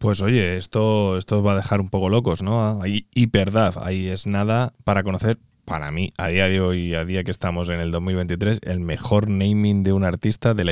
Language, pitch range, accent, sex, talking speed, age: Spanish, 90-110 Hz, Spanish, male, 220 wpm, 20-39